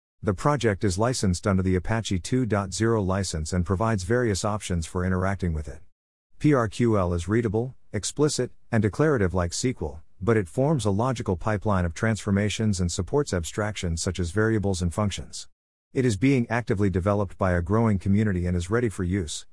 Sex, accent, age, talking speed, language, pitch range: male, American, 50-69, 170 wpm, English, 90-115 Hz